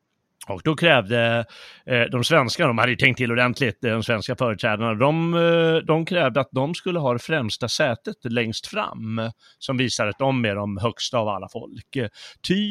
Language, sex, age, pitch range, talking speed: Swedish, male, 30-49, 115-155 Hz, 175 wpm